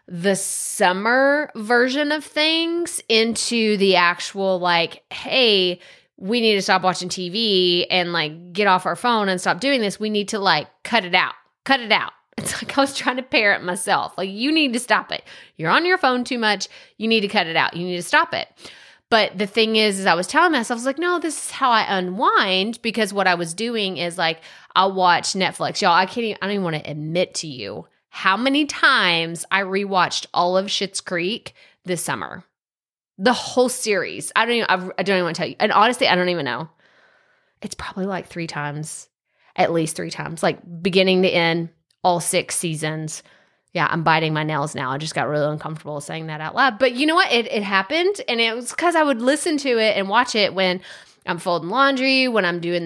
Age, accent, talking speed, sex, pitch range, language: 30-49, American, 220 wpm, female, 175-245 Hz, English